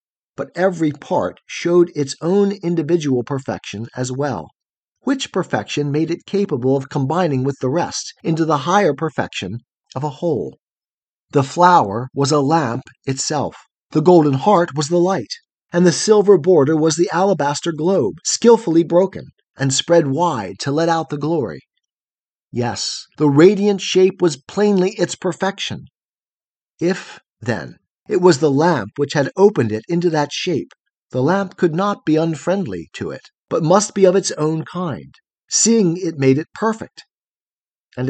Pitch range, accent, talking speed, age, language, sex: 145-195 Hz, American, 155 wpm, 40-59, English, male